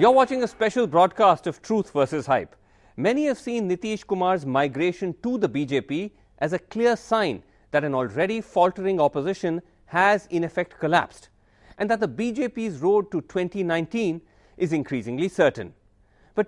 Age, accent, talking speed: 40-59, Indian, 155 wpm